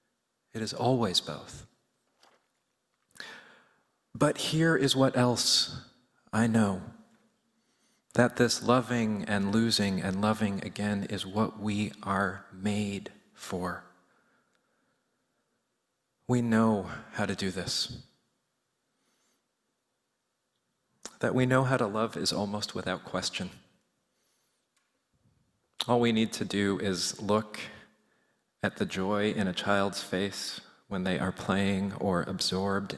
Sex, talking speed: male, 110 wpm